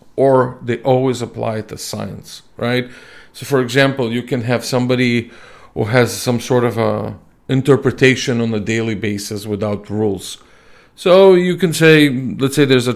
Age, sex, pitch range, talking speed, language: 40-59, male, 115-135 Hz, 160 wpm, English